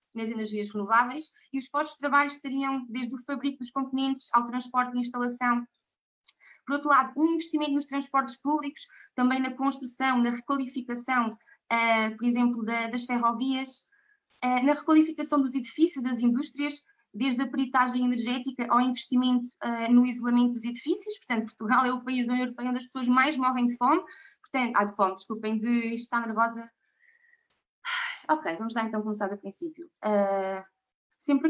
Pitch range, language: 225-265 Hz, Portuguese